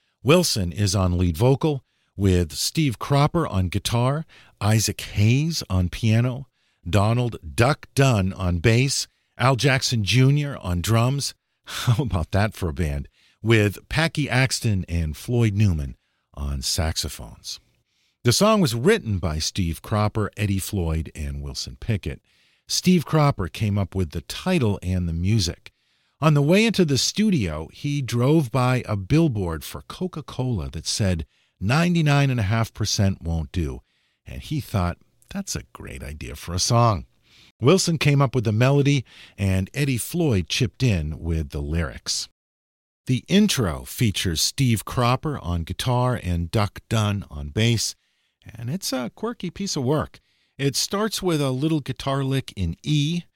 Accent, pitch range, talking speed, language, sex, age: American, 90-140 Hz, 145 wpm, English, male, 50-69